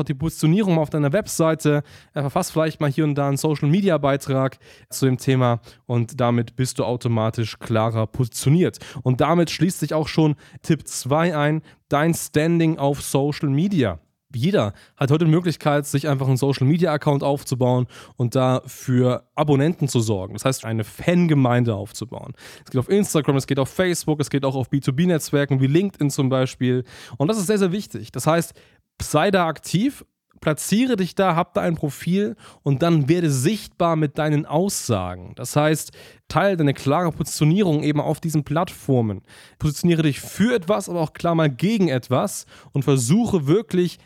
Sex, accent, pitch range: male, German, 130-165 Hz